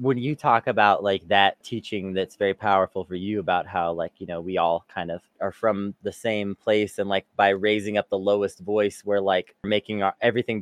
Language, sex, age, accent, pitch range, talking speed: English, male, 20-39, American, 100-145 Hz, 215 wpm